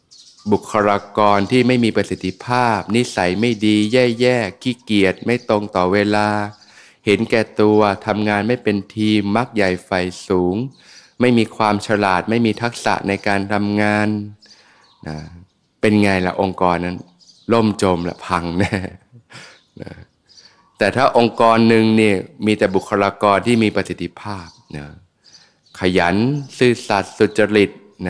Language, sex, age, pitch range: Thai, male, 20-39, 95-110 Hz